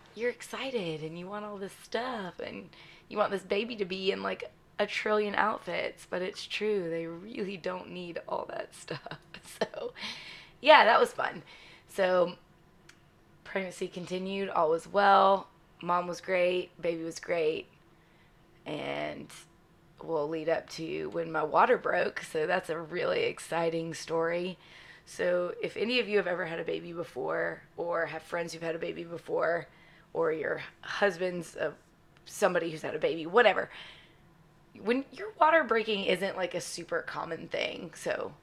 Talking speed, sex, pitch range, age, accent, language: 160 wpm, female, 170-215 Hz, 20-39, American, English